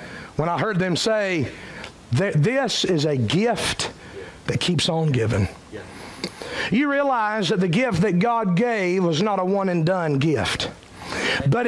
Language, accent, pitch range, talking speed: English, American, 215-325 Hz, 150 wpm